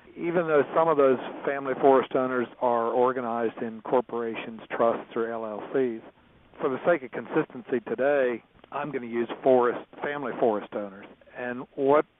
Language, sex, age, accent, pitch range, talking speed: English, male, 60-79, American, 115-140 Hz, 150 wpm